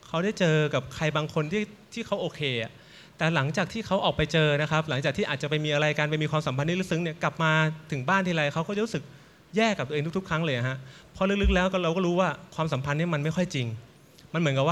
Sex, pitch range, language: male, 145-185 Hz, Thai